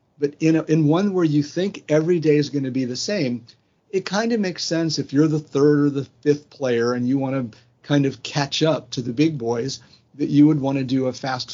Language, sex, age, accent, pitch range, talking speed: English, male, 50-69, American, 130-160 Hz, 250 wpm